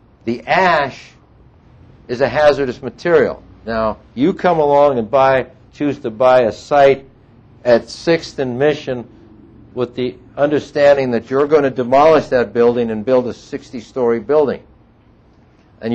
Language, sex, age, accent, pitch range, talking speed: English, male, 60-79, American, 110-135 Hz, 140 wpm